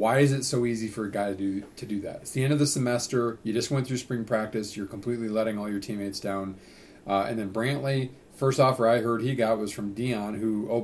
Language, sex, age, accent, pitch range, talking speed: English, male, 40-59, American, 110-135 Hz, 260 wpm